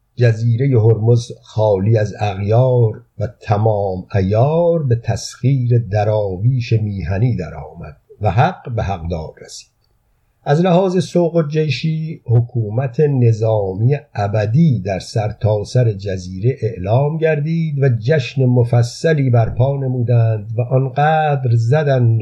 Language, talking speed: Persian, 110 wpm